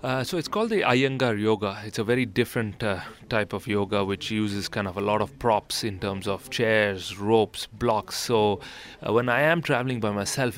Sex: male